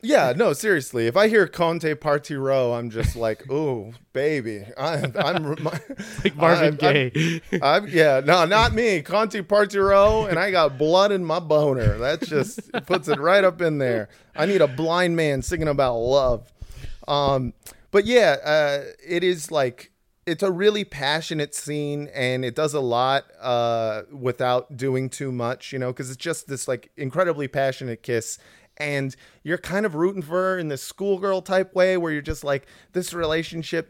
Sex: male